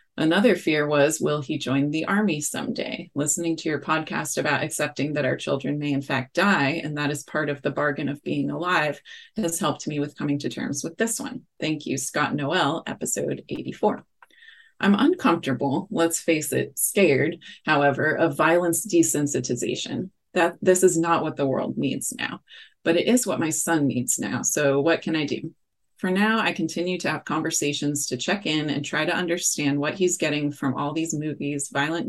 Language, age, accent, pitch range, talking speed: English, 30-49, American, 145-180 Hz, 190 wpm